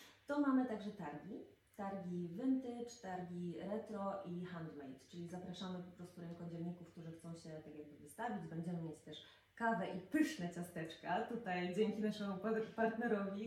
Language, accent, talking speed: Polish, native, 145 wpm